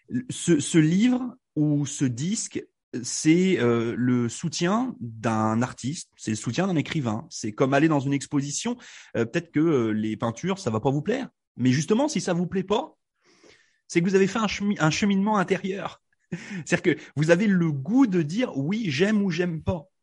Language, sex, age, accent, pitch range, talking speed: French, male, 30-49, French, 140-205 Hz, 200 wpm